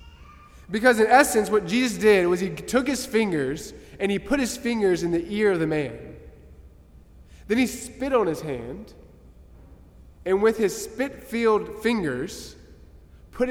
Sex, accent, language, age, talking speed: male, American, English, 20-39, 150 wpm